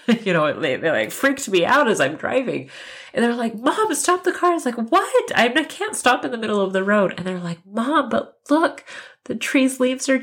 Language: English